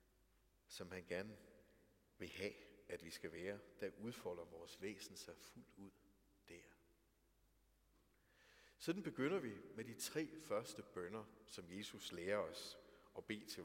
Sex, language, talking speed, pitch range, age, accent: male, Danish, 140 wpm, 95-135 Hz, 60-79, native